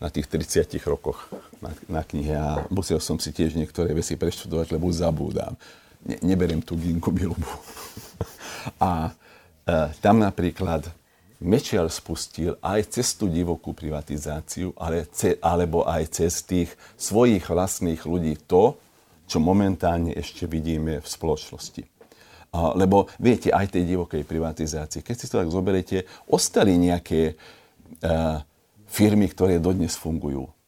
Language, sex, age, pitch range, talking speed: Slovak, male, 50-69, 80-95 Hz, 135 wpm